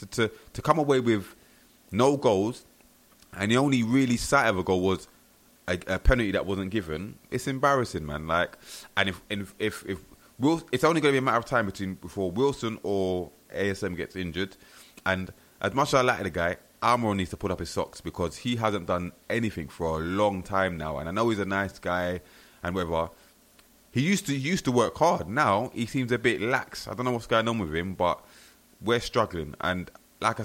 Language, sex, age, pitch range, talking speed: English, male, 20-39, 90-115 Hz, 215 wpm